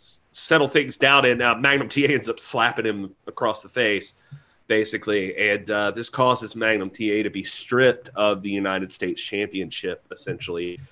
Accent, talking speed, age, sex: American, 165 wpm, 30-49, male